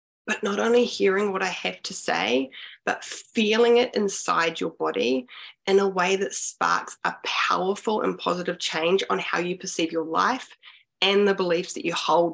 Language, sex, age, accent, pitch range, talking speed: English, female, 20-39, Australian, 165-195 Hz, 180 wpm